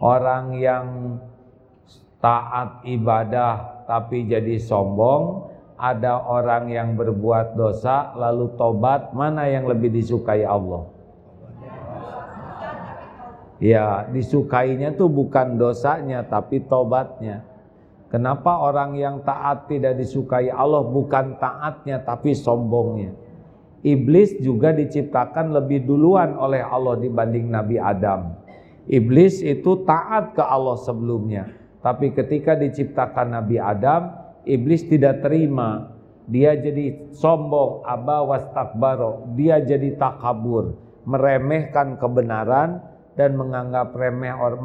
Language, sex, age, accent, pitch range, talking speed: Indonesian, male, 40-59, native, 115-140 Hz, 100 wpm